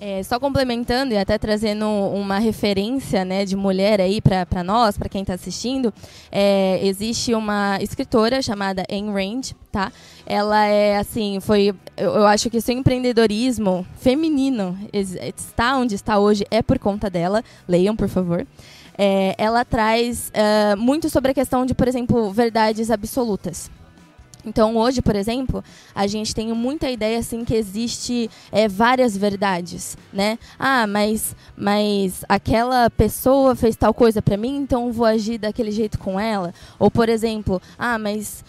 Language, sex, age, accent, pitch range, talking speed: Portuguese, female, 10-29, Brazilian, 200-245 Hz, 155 wpm